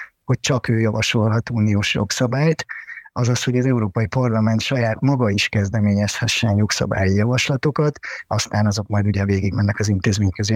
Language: Hungarian